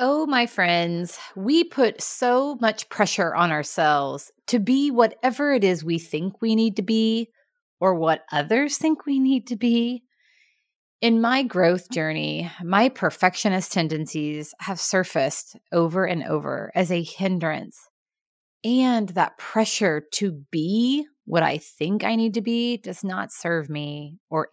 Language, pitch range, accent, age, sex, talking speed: English, 160-230 Hz, American, 30-49, female, 150 wpm